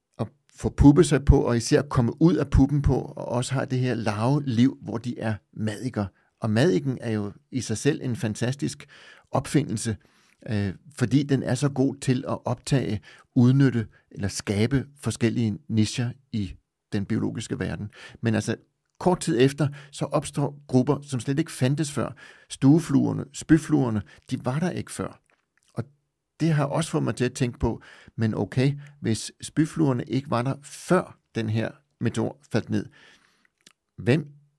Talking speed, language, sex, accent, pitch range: 160 wpm, Danish, male, native, 115-140 Hz